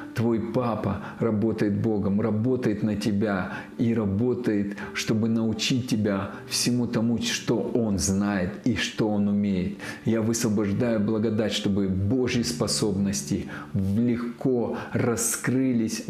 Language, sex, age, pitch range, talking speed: Russian, male, 40-59, 100-115 Hz, 110 wpm